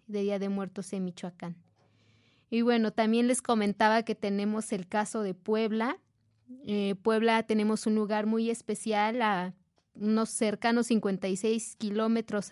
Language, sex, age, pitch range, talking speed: Spanish, female, 20-39, 200-235 Hz, 140 wpm